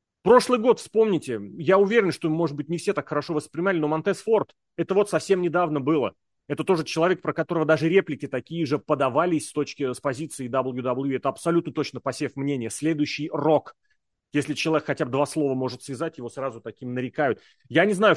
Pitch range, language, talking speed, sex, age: 130-170 Hz, Russian, 190 wpm, male, 30-49